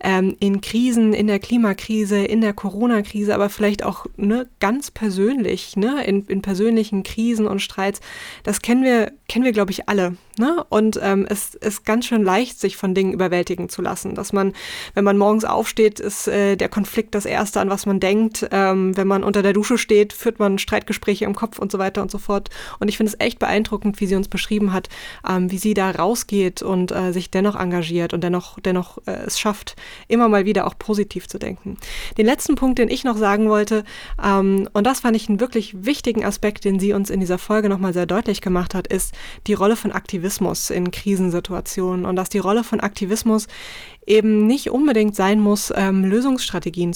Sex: female